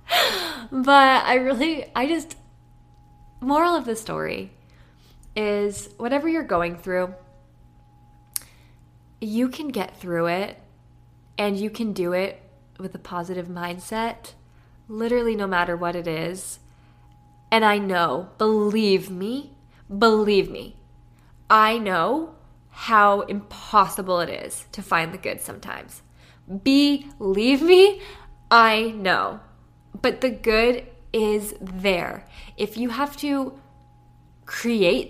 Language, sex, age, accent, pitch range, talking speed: English, female, 20-39, American, 175-230 Hz, 115 wpm